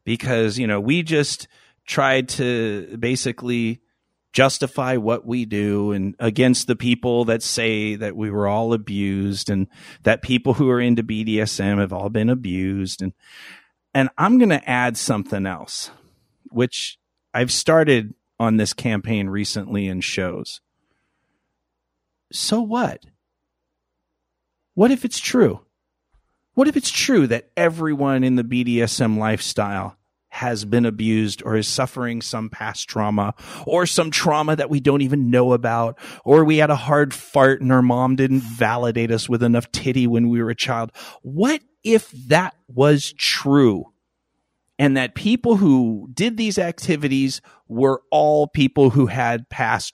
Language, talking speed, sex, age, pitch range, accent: English, 150 wpm, male, 40-59, 110-145 Hz, American